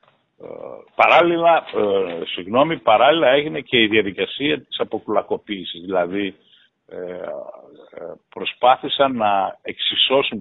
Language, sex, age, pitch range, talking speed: Greek, male, 60-79, 115-170 Hz, 100 wpm